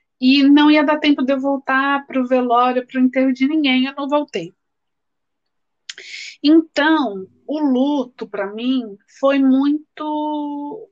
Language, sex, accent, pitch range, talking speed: Portuguese, female, Brazilian, 220-295 Hz, 145 wpm